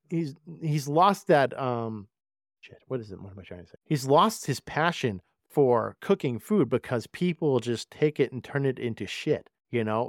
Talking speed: 200 wpm